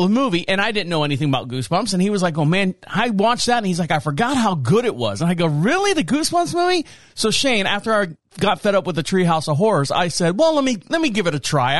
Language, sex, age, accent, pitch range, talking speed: English, male, 40-59, American, 175-235 Hz, 285 wpm